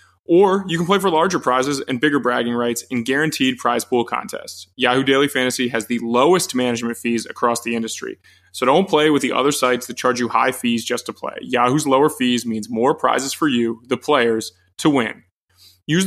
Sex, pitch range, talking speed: male, 120-145 Hz, 205 wpm